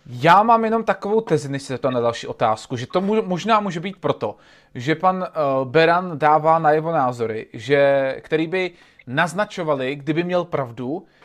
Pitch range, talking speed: 135-175 Hz, 160 wpm